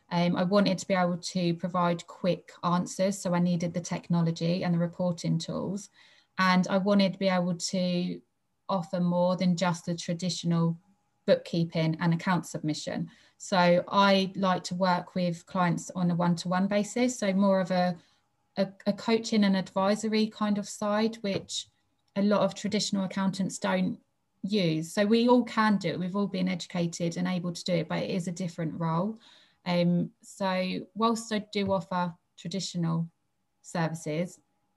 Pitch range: 170-195 Hz